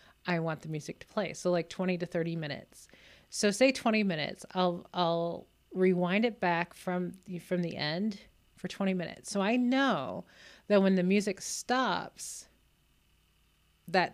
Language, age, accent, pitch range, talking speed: English, 30-49, American, 170-205 Hz, 160 wpm